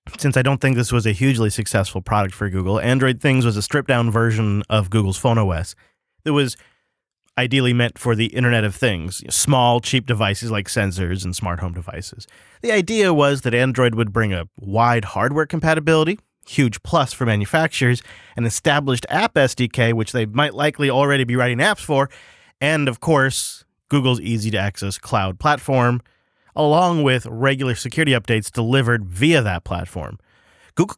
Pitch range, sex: 110-140 Hz, male